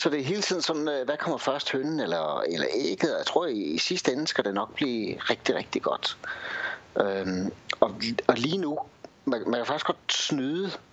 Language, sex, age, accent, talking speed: Danish, male, 60-79, native, 185 wpm